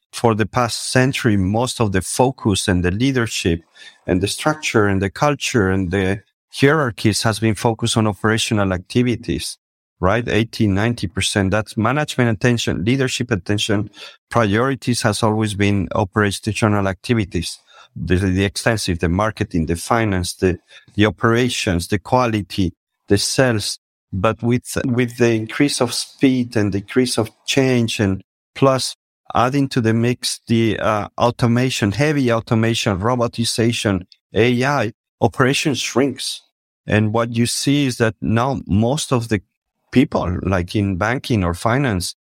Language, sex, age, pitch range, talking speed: English, male, 50-69, 100-125 Hz, 135 wpm